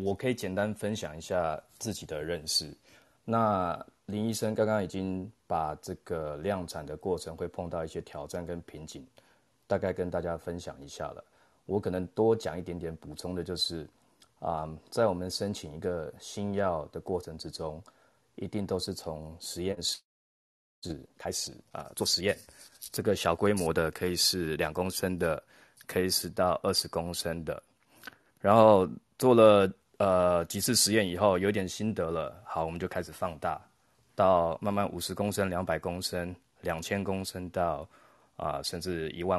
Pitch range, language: 85-105 Hz, Chinese